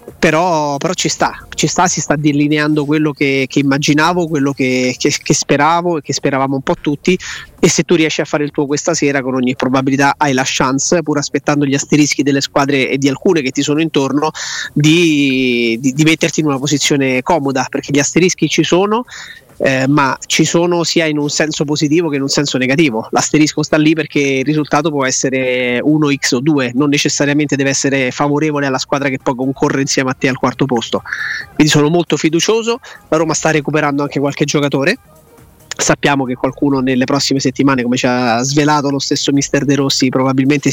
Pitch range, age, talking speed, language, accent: 135-155 Hz, 30-49, 195 wpm, Italian, native